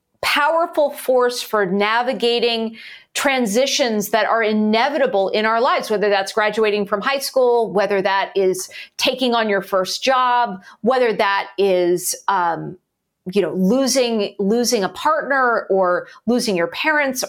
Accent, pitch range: American, 205-260 Hz